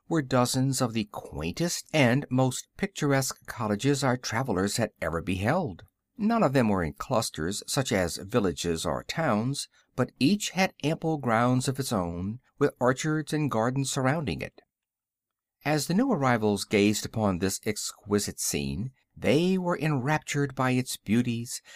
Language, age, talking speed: English, 60-79, 150 wpm